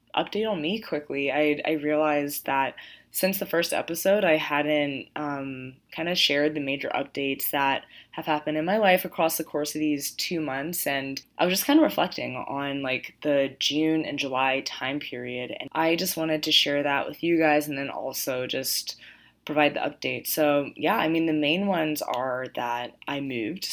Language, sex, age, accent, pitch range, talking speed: English, female, 20-39, American, 140-160 Hz, 195 wpm